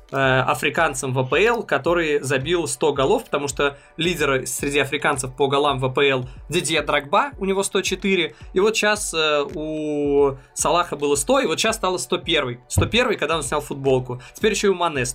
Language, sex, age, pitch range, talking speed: Russian, male, 20-39, 140-190 Hz, 170 wpm